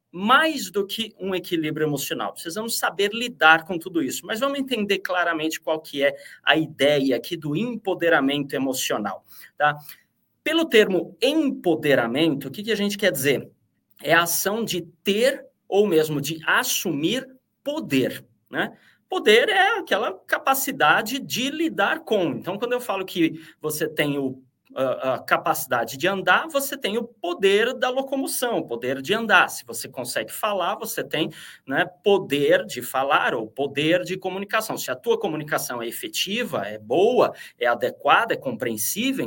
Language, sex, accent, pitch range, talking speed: Portuguese, male, Brazilian, 155-255 Hz, 155 wpm